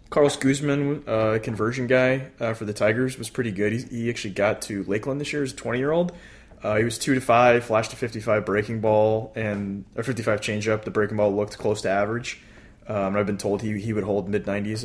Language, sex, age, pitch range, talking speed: English, male, 20-39, 105-120 Hz, 225 wpm